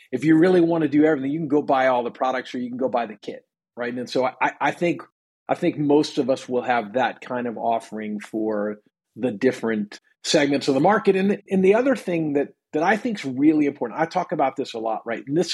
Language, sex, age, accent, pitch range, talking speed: English, male, 40-59, American, 125-165 Hz, 260 wpm